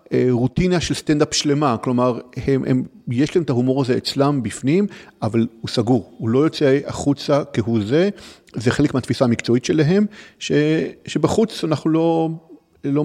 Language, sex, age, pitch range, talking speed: Hebrew, male, 40-59, 120-150 Hz, 150 wpm